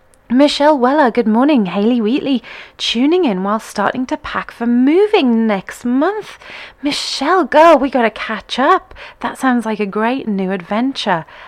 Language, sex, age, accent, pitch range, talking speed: English, female, 30-49, British, 205-265 Hz, 155 wpm